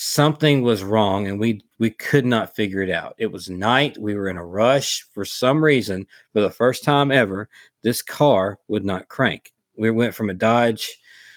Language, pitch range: English, 105-130 Hz